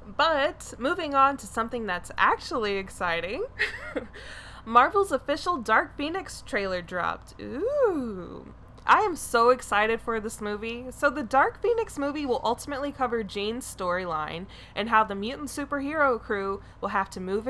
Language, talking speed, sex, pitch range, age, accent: English, 145 wpm, female, 205-290 Hz, 20-39, American